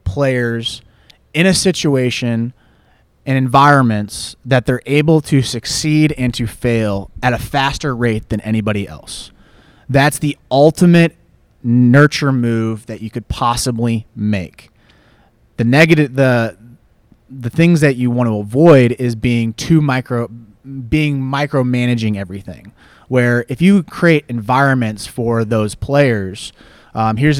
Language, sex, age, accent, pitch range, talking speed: English, male, 30-49, American, 115-140 Hz, 125 wpm